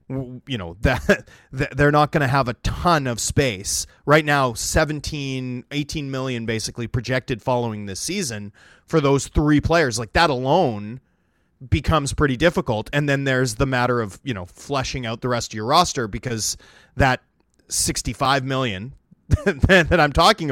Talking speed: 160 wpm